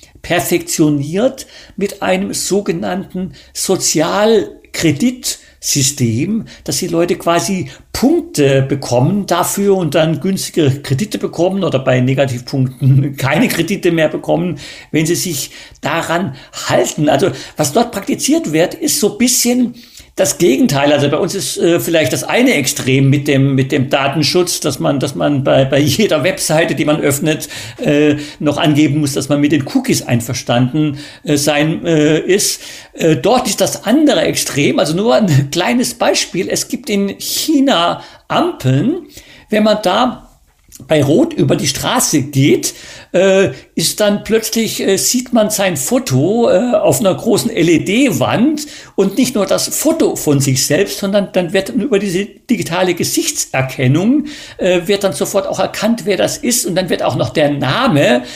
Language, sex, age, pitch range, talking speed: German, male, 50-69, 145-210 Hz, 150 wpm